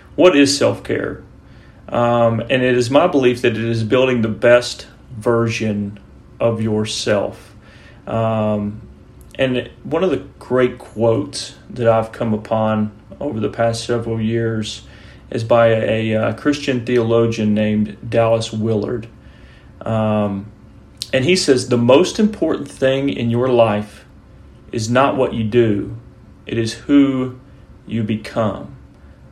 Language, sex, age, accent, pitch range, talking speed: English, male, 30-49, American, 110-125 Hz, 130 wpm